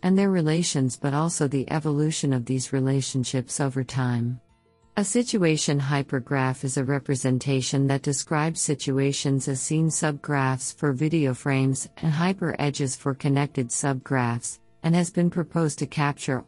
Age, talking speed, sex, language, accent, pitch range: 50-69, 140 wpm, female, English, American, 130-155 Hz